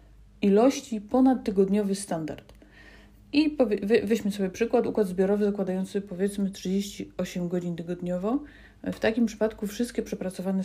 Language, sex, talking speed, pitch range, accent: Polish, female, 115 wpm, 180-225 Hz, native